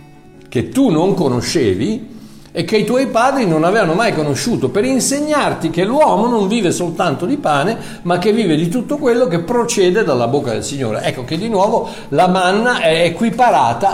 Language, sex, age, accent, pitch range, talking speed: Italian, male, 60-79, native, 130-200 Hz, 180 wpm